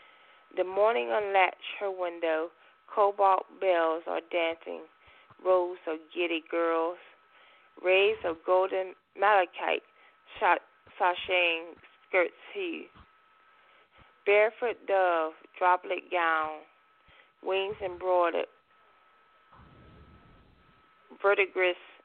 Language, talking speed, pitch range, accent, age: English, 75 wpm, 175-200 Hz, American, 20-39